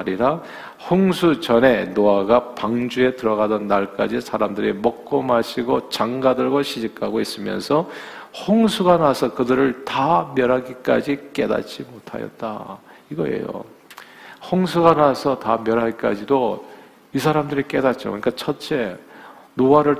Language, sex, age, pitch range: Korean, male, 50-69, 110-145 Hz